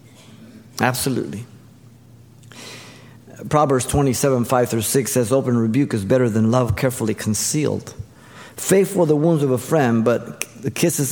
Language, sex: English, male